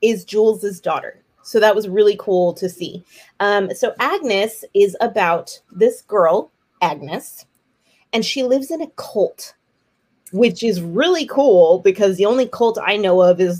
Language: English